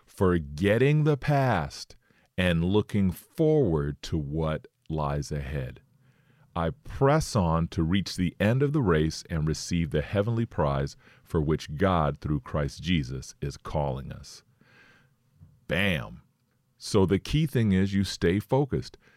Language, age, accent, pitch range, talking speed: English, 40-59, American, 80-110 Hz, 135 wpm